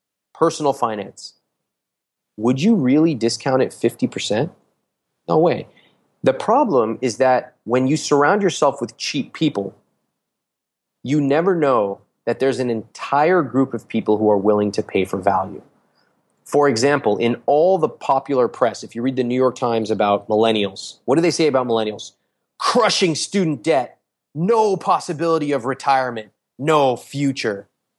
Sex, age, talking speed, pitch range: male, 30-49, 150 wpm, 110-150 Hz